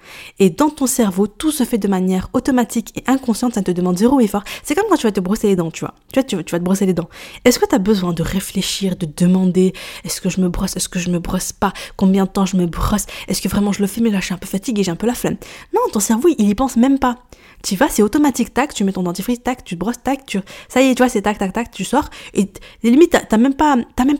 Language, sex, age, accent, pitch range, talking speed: French, female, 20-39, French, 195-260 Hz, 305 wpm